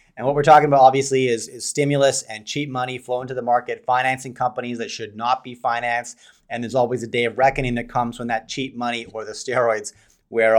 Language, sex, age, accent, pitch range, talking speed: English, male, 30-49, American, 120-135 Hz, 225 wpm